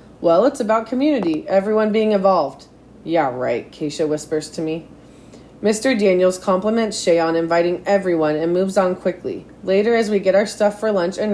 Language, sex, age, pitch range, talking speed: English, female, 30-49, 170-215 Hz, 175 wpm